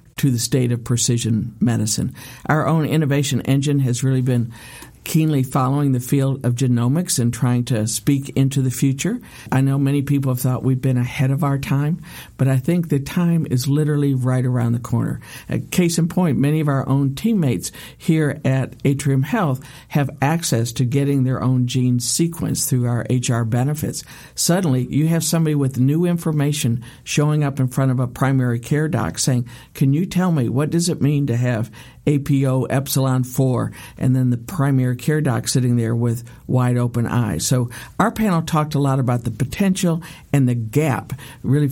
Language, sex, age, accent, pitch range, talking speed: English, male, 50-69, American, 125-145 Hz, 185 wpm